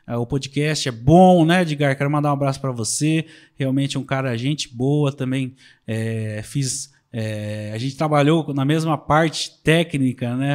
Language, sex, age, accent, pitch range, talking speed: Portuguese, male, 20-39, Brazilian, 125-155 Hz, 165 wpm